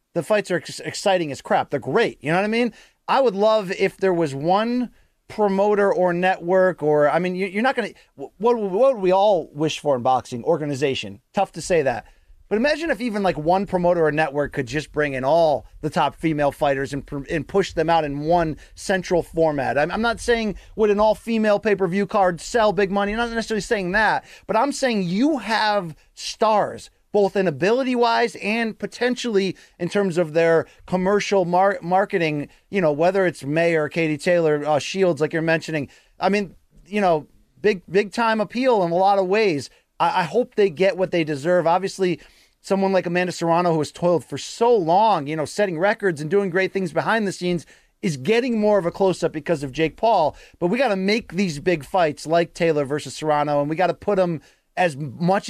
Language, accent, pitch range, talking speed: English, American, 160-205 Hz, 210 wpm